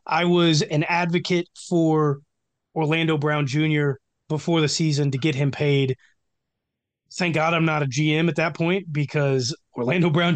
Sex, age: male, 30-49